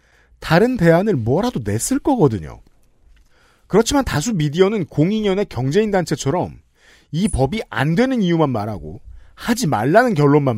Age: 40-59